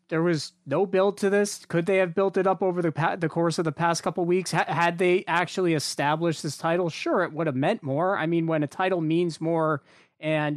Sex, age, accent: male, 30-49, American